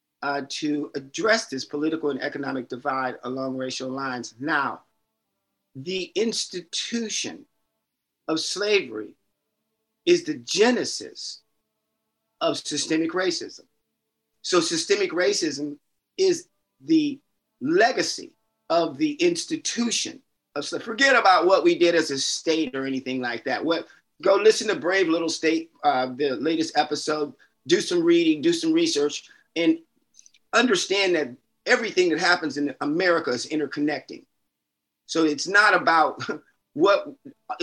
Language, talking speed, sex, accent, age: English, 125 wpm, male, American, 50-69